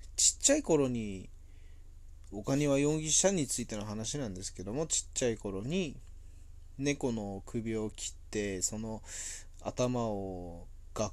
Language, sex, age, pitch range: Japanese, male, 20-39, 85-140 Hz